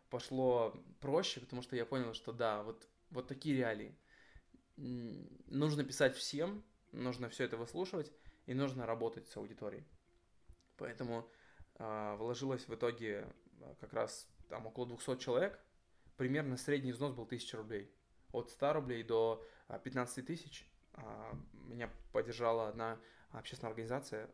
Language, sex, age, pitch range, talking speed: Russian, male, 20-39, 115-135 Hz, 130 wpm